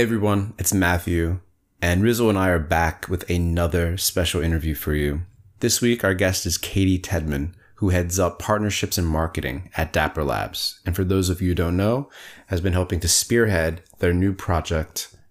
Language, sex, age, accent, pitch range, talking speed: English, male, 30-49, American, 80-100 Hz, 190 wpm